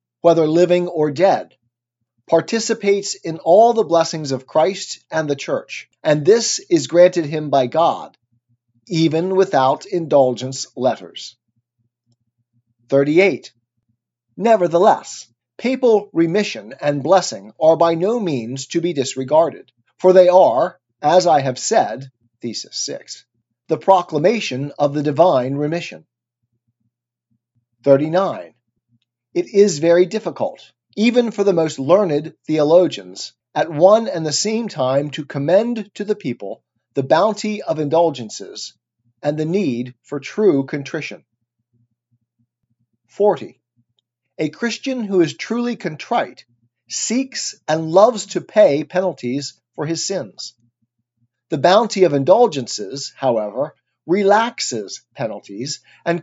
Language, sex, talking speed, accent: English, male, 115 wpm, American